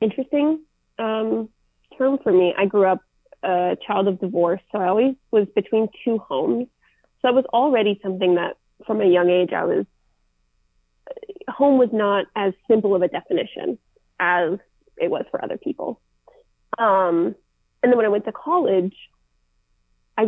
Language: English